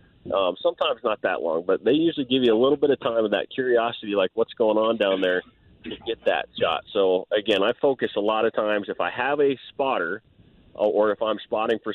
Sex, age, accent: male, 30-49, American